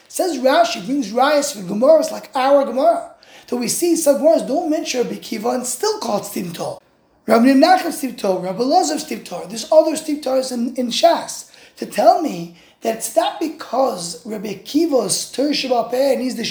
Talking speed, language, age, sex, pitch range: 180 wpm, English, 20-39, male, 225-310 Hz